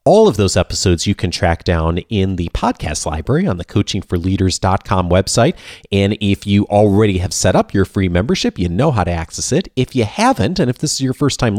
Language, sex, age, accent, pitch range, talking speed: English, male, 30-49, American, 90-125 Hz, 215 wpm